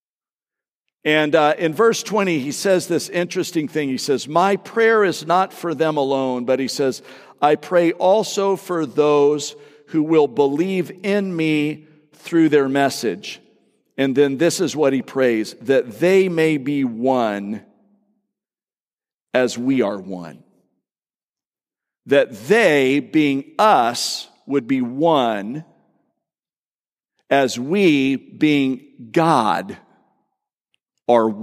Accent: American